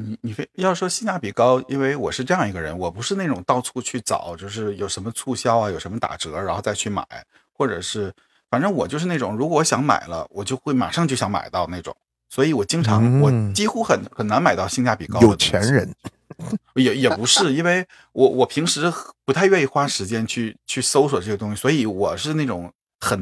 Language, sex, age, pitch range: Chinese, male, 50-69, 100-140 Hz